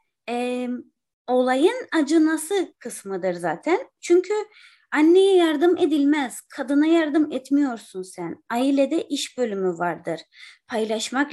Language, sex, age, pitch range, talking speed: Turkish, female, 30-49, 190-275 Hz, 90 wpm